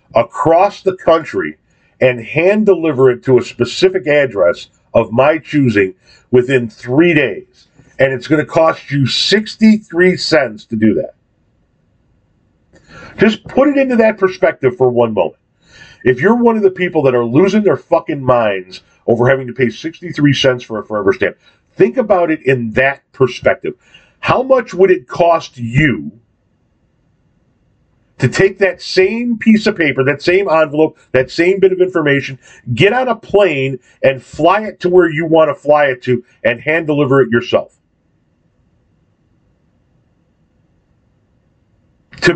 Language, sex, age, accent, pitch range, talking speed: English, male, 40-59, American, 125-190 Hz, 150 wpm